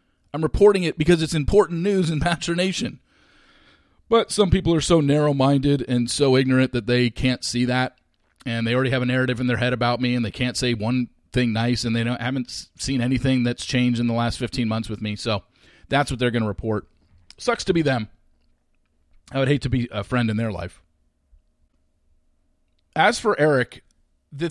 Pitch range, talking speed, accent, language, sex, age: 110-155 Hz, 200 wpm, American, English, male, 40-59